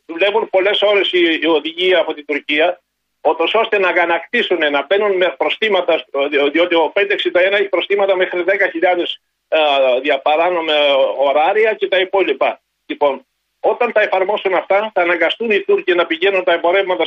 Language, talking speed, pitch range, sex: Greek, 145 wpm, 170-210 Hz, male